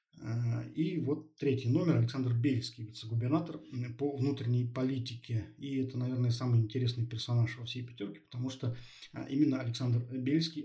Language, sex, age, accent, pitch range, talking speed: Russian, male, 20-39, native, 120-135 Hz, 135 wpm